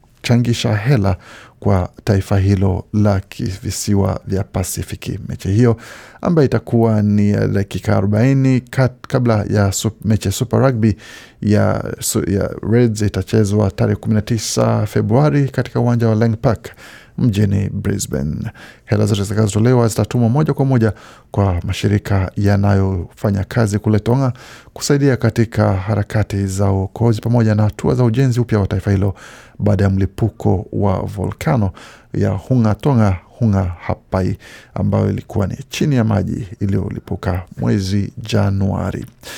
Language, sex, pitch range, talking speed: Swahili, male, 100-120 Hz, 125 wpm